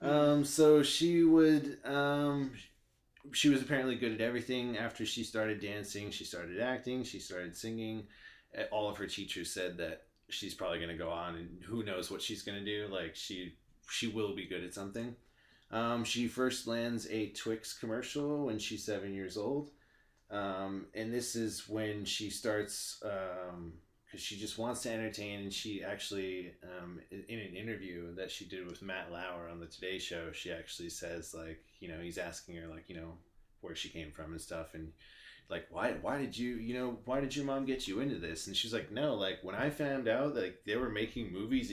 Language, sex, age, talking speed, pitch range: English, male, 20-39, 205 wpm, 95-120 Hz